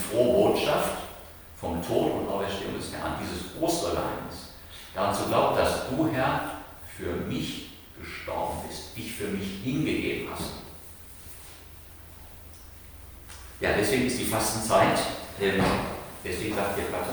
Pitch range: 80-100 Hz